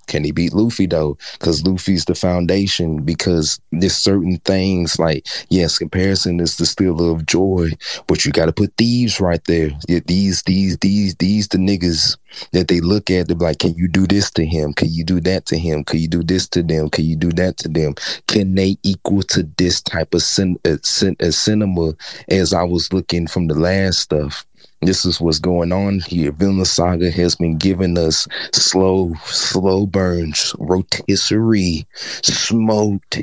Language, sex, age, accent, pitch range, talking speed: English, male, 30-49, American, 85-100 Hz, 180 wpm